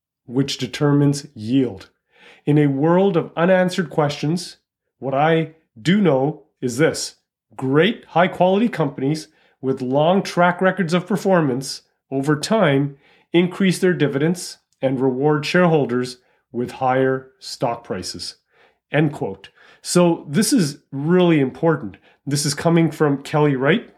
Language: English